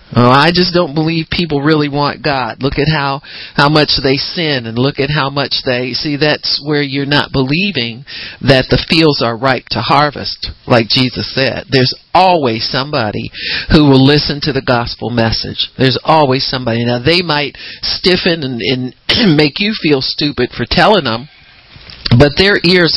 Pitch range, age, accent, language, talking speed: 125-150 Hz, 50-69, American, English, 170 wpm